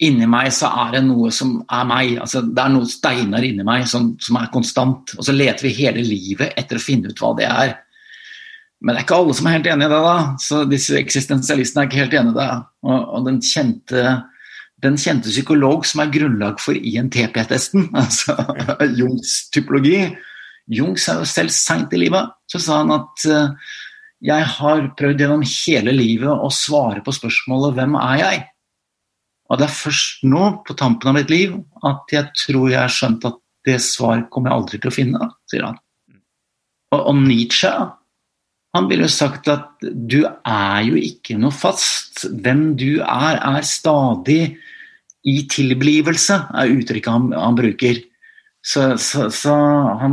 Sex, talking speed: male, 180 wpm